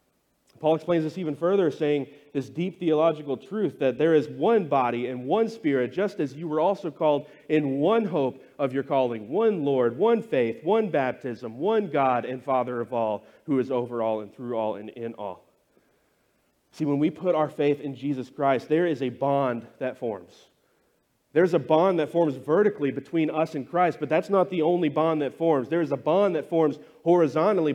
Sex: male